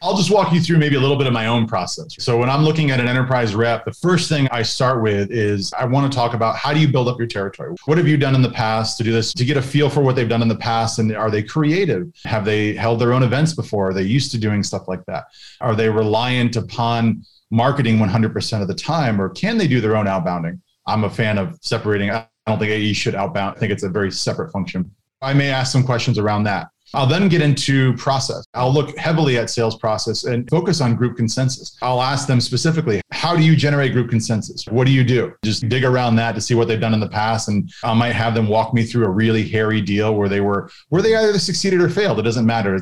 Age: 30-49